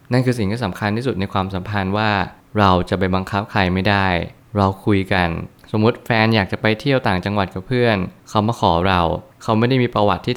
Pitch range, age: 95-115 Hz, 20-39